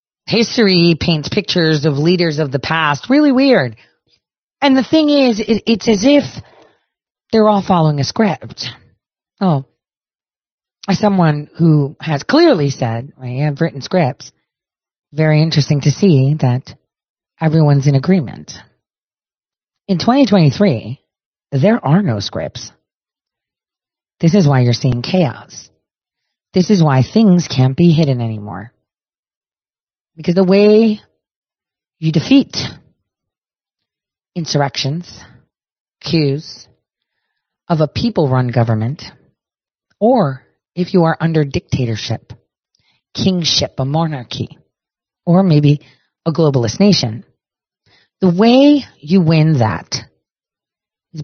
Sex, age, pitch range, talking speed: female, 40-59, 130-185 Hz, 105 wpm